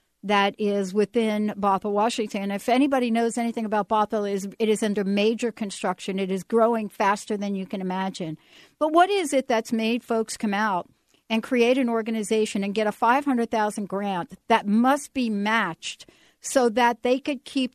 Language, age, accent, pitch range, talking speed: English, 60-79, American, 200-240 Hz, 175 wpm